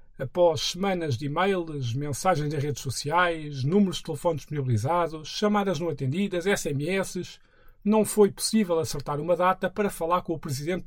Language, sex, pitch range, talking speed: Portuguese, male, 145-200 Hz, 150 wpm